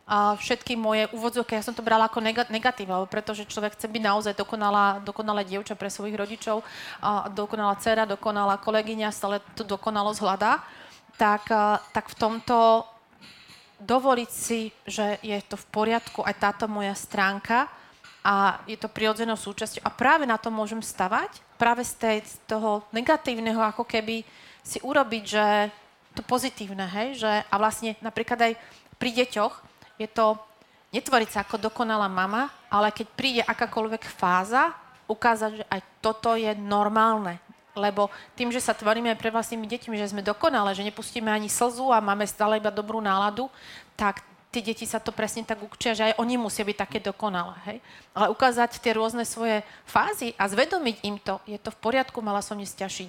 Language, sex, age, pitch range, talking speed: Slovak, female, 30-49, 205-230 Hz, 165 wpm